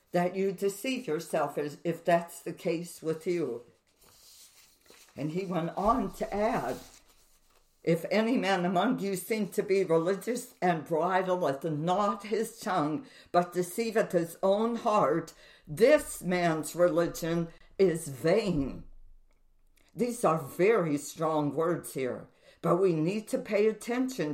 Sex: female